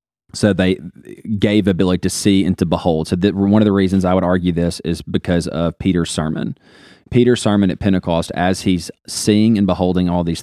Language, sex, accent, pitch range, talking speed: English, male, American, 85-105 Hz, 200 wpm